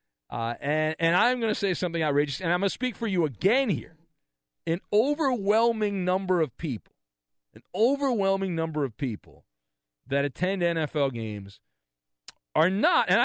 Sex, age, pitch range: male, 40-59, 145-220 Hz